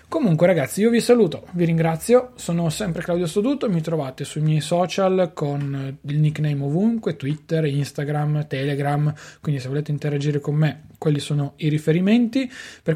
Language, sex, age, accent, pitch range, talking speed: Italian, male, 20-39, native, 140-165 Hz, 155 wpm